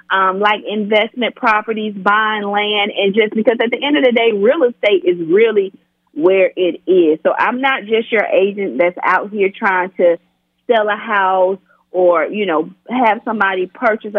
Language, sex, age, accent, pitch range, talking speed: English, female, 40-59, American, 195-235 Hz, 180 wpm